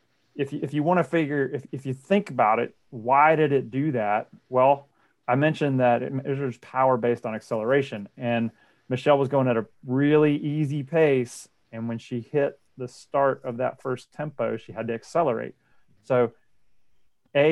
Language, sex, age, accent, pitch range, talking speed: English, male, 30-49, American, 120-145 Hz, 180 wpm